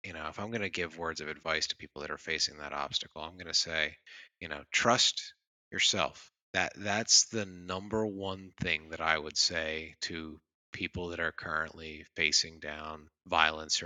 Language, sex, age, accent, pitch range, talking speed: English, male, 30-49, American, 80-105 Hz, 185 wpm